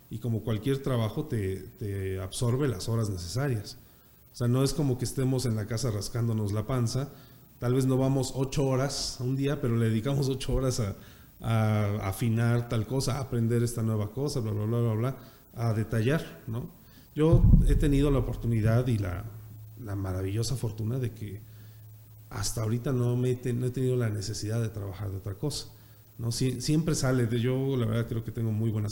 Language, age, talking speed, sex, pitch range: Spanish, 40-59, 195 wpm, male, 110-130 Hz